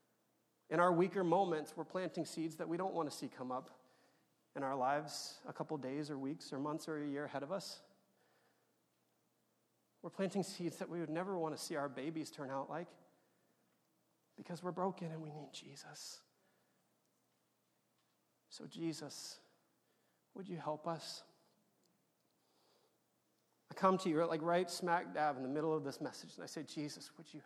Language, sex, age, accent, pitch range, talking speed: English, male, 30-49, American, 145-180 Hz, 175 wpm